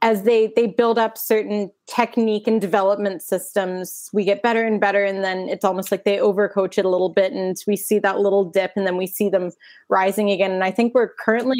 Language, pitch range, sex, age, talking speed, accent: English, 185-215 Hz, female, 20-39, 230 wpm, American